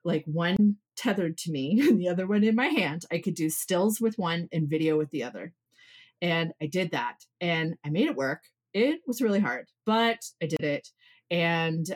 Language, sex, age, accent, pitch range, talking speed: English, female, 30-49, American, 150-185 Hz, 205 wpm